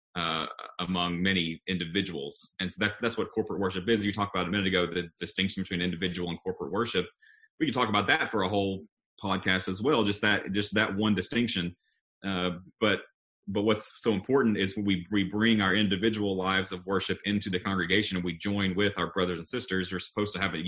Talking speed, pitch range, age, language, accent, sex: 215 wpm, 90-105 Hz, 30-49, English, American, male